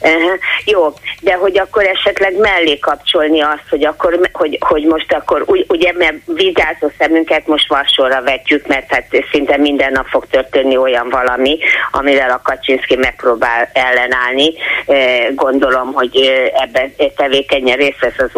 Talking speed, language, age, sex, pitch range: 145 wpm, Hungarian, 30-49, female, 135-170 Hz